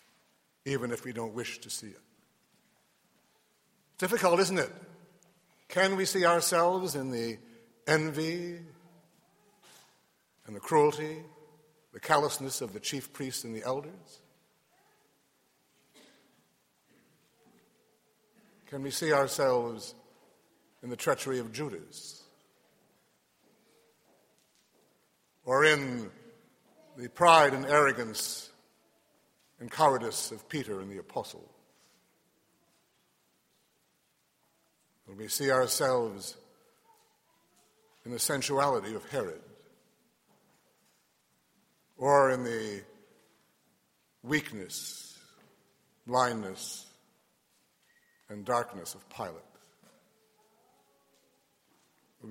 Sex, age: male, 60-79